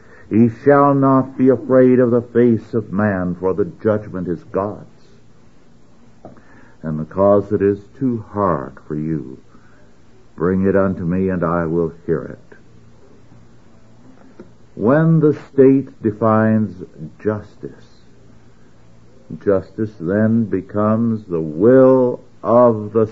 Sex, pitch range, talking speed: male, 90-115 Hz, 115 wpm